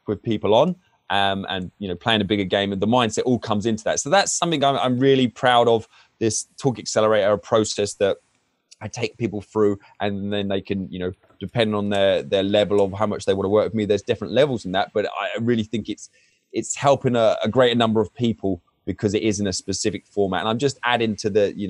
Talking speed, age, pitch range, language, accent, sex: 240 wpm, 20-39, 100-115 Hz, English, British, male